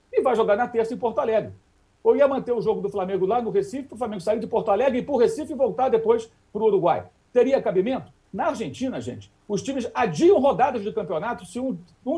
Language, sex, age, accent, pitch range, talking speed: Portuguese, male, 60-79, Brazilian, 205-280 Hz, 240 wpm